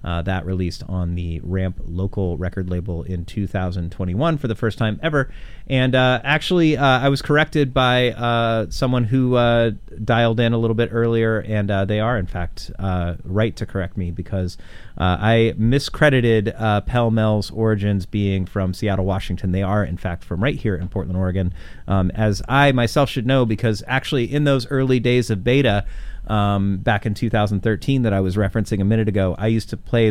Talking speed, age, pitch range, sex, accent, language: 190 wpm, 30-49, 90-115 Hz, male, American, English